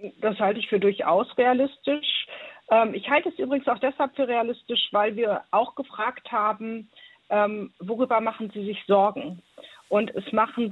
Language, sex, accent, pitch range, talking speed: German, female, German, 200-245 Hz, 150 wpm